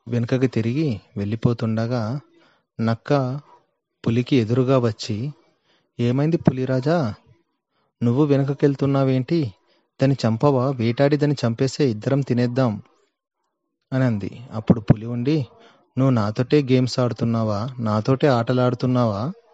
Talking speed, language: 90 wpm, Telugu